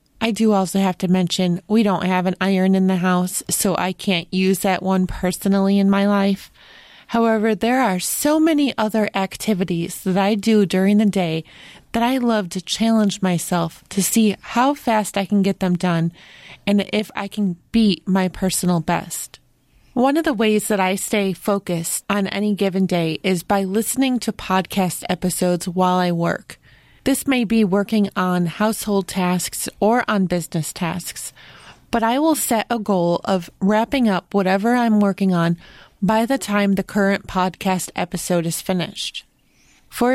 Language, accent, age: English, American, 30-49